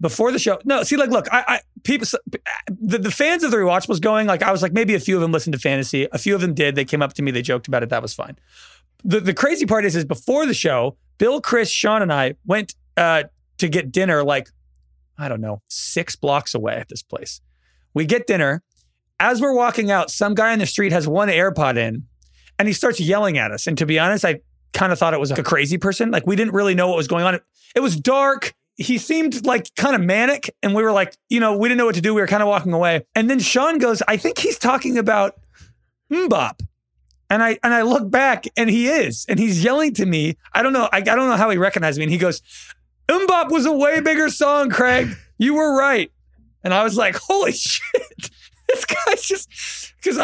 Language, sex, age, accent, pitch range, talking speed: English, male, 30-49, American, 160-250 Hz, 245 wpm